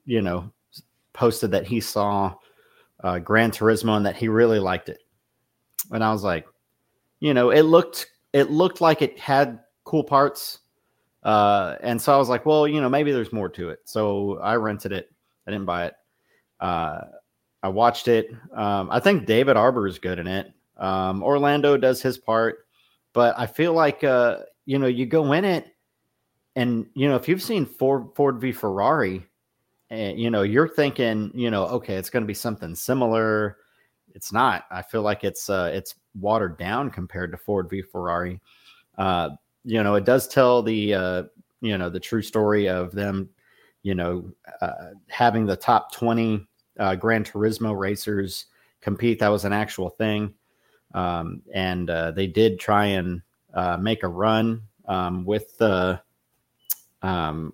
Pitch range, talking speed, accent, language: 95-120 Hz, 175 wpm, American, English